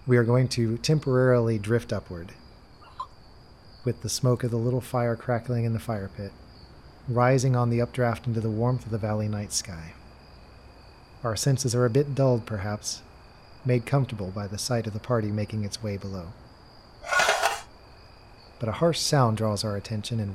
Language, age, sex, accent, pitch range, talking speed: English, 40-59, male, American, 105-120 Hz, 170 wpm